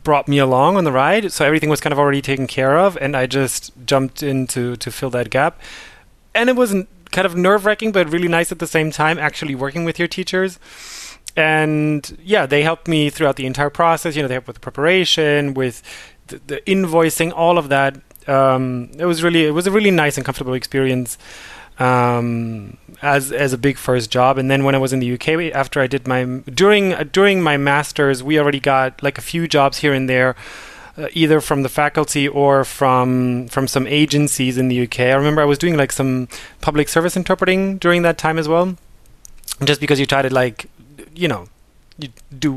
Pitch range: 130-165 Hz